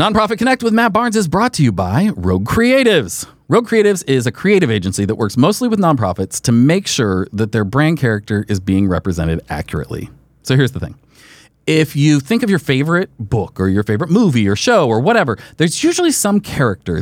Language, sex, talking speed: English, male, 200 wpm